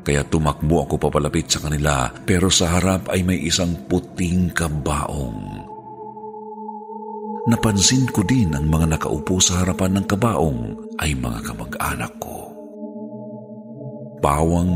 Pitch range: 75-100 Hz